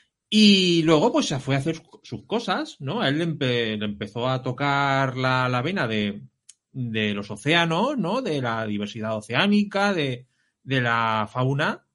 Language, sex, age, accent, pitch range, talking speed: Spanish, male, 30-49, Spanish, 115-175 Hz, 170 wpm